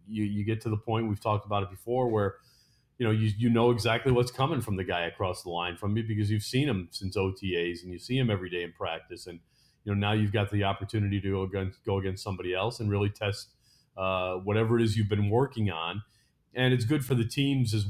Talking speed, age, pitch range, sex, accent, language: 250 wpm, 40-59, 105-125 Hz, male, American, English